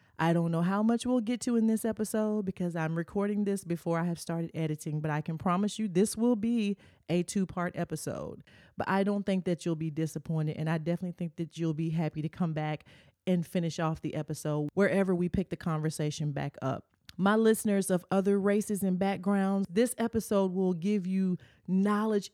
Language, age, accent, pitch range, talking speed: English, 30-49, American, 160-210 Hz, 200 wpm